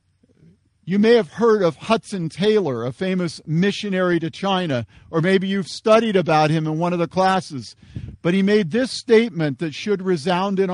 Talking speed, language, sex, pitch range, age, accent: 180 wpm, English, male, 130-210 Hz, 50-69, American